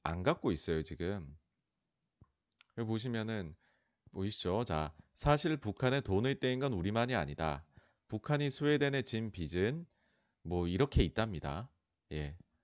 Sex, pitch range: male, 85-130 Hz